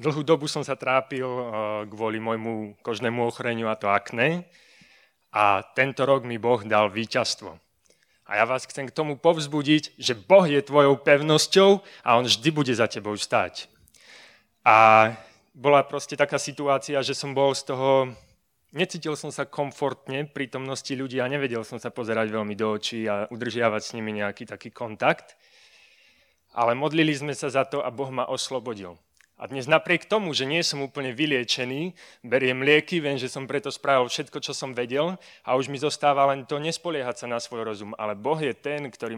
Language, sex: Slovak, male